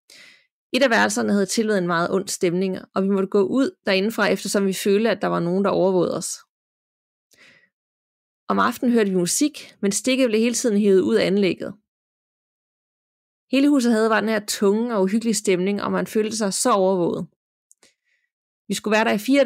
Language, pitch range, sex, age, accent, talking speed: Danish, 190-230 Hz, female, 30-49, native, 190 wpm